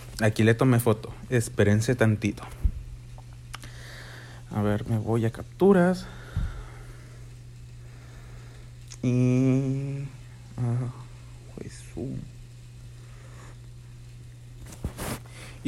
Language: Spanish